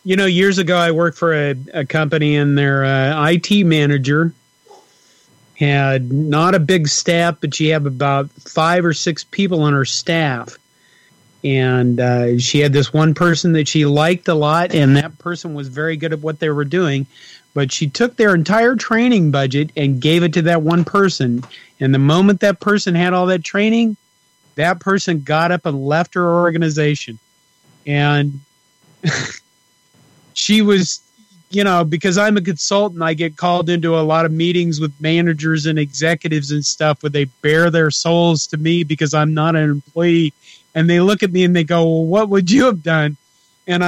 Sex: male